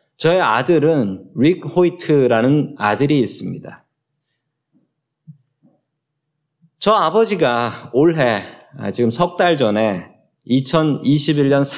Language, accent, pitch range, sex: Korean, native, 125-175 Hz, male